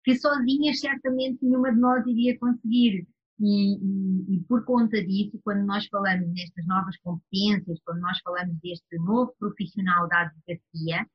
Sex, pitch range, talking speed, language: female, 180-230 Hz, 150 wpm, Portuguese